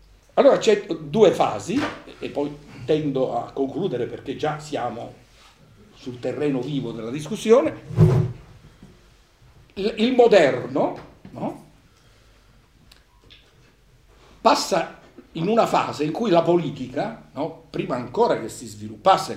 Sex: male